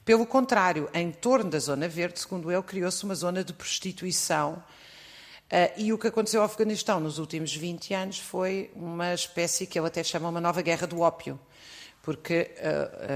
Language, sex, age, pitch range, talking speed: Portuguese, female, 50-69, 150-185 Hz, 170 wpm